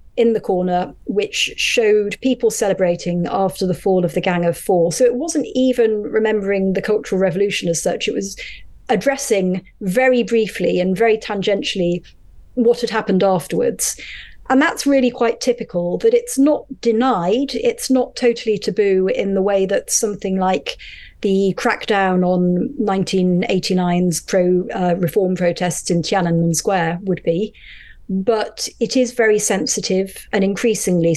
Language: English